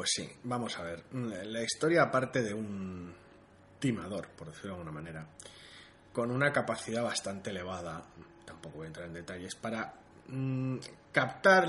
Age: 20-39